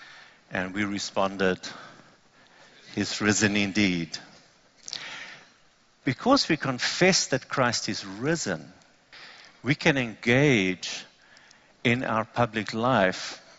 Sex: male